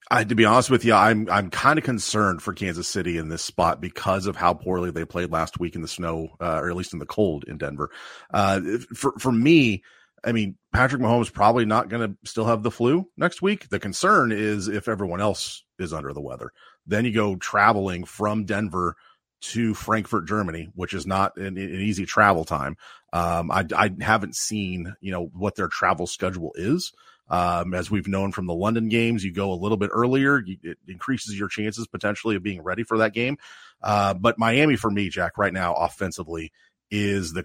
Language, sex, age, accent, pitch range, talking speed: English, male, 30-49, American, 90-115 Hz, 210 wpm